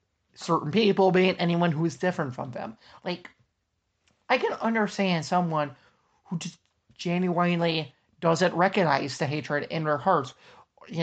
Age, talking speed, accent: 30-49, 135 wpm, American